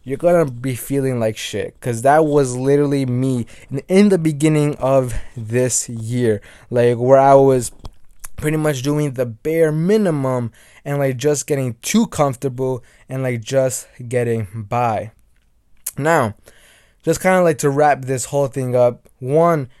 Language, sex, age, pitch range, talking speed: English, male, 20-39, 120-155 Hz, 150 wpm